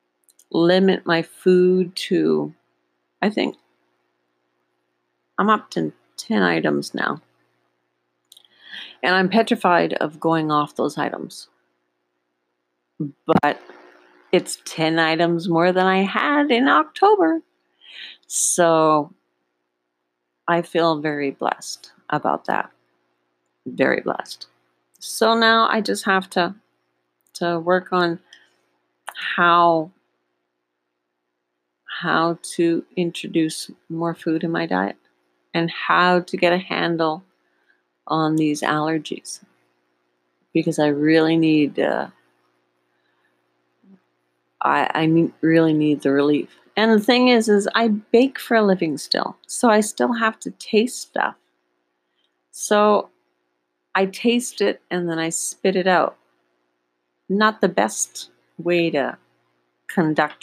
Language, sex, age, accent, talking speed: English, female, 50-69, American, 110 wpm